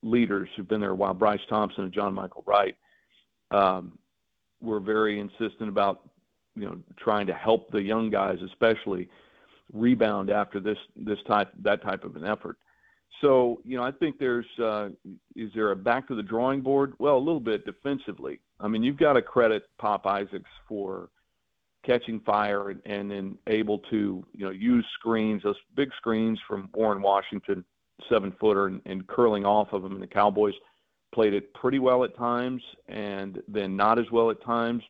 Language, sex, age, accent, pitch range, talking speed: English, male, 50-69, American, 100-115 Hz, 180 wpm